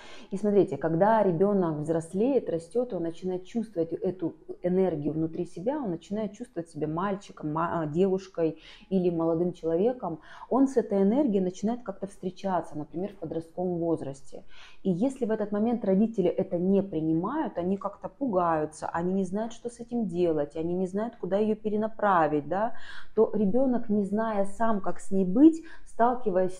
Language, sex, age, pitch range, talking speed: Russian, female, 30-49, 170-210 Hz, 160 wpm